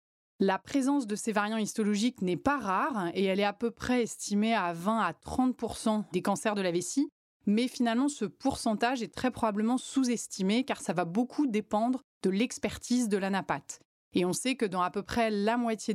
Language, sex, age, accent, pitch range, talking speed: French, female, 30-49, French, 190-235 Hz, 195 wpm